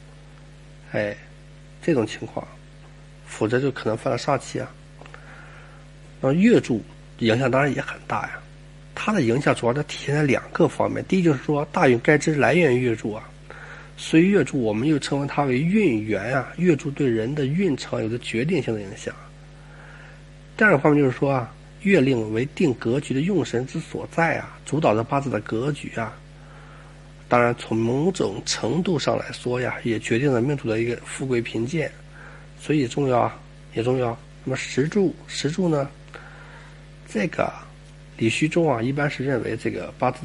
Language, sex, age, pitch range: Chinese, male, 50-69, 120-150 Hz